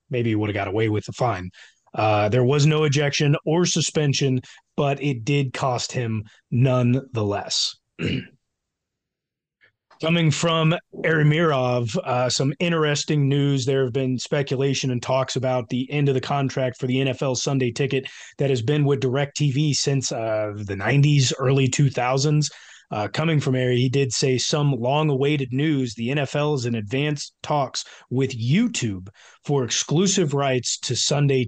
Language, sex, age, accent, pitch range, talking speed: English, male, 30-49, American, 125-155 Hz, 150 wpm